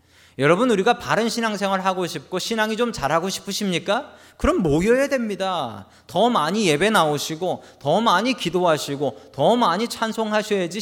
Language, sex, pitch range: Korean, male, 125-200 Hz